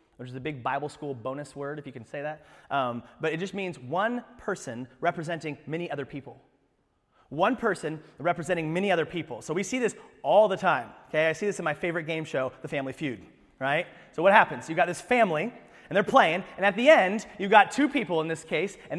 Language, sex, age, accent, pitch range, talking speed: English, male, 30-49, American, 150-235 Hz, 230 wpm